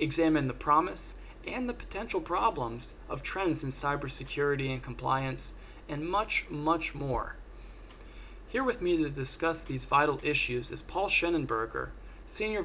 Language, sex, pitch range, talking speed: English, male, 130-175 Hz, 140 wpm